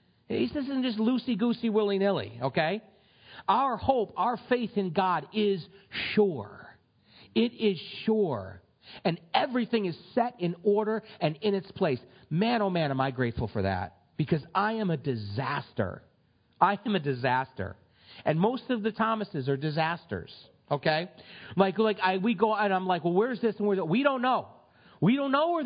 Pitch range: 155-230 Hz